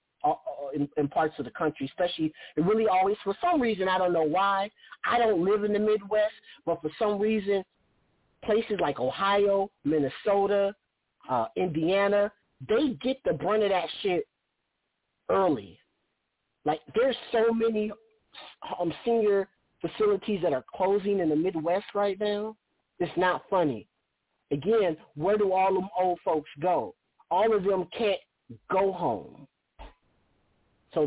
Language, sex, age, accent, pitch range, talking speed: English, male, 40-59, American, 140-200 Hz, 145 wpm